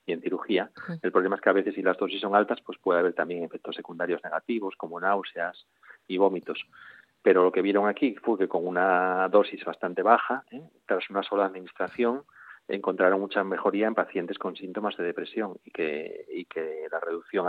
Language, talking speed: Spanish, 195 wpm